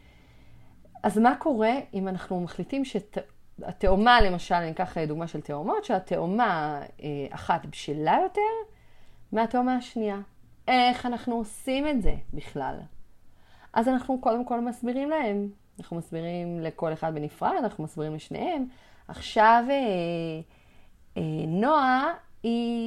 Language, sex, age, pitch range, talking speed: Hebrew, female, 30-49, 170-245 Hz, 120 wpm